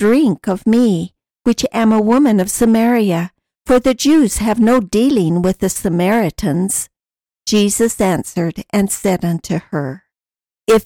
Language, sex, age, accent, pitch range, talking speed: English, female, 60-79, American, 180-225 Hz, 140 wpm